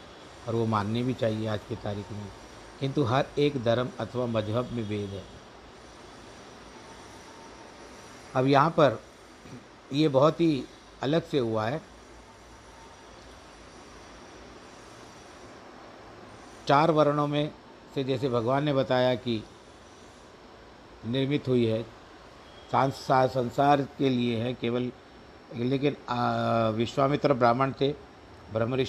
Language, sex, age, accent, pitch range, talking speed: Hindi, male, 50-69, native, 115-135 Hz, 105 wpm